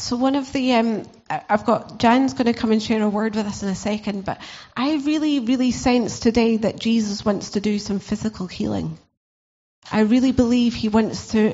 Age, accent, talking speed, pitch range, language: 30-49, British, 210 wpm, 210-275 Hz, English